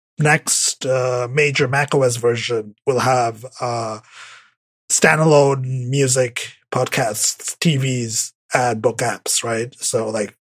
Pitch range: 125-155 Hz